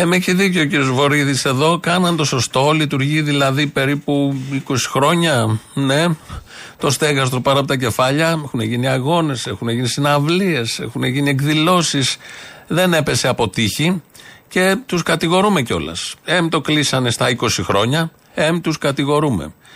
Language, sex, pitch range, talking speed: Greek, male, 120-150 Hz, 150 wpm